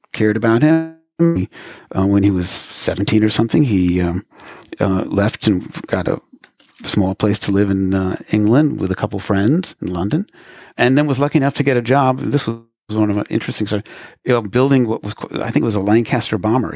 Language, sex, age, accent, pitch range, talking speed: English, male, 50-69, American, 105-130 Hz, 215 wpm